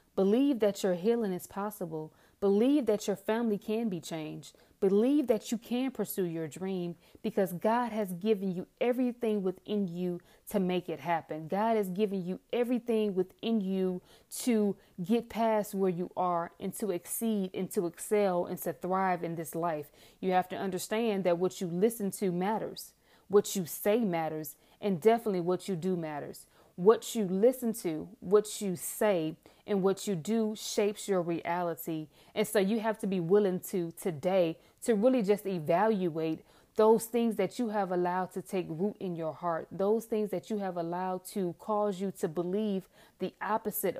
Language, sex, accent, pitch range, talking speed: English, female, American, 180-215 Hz, 175 wpm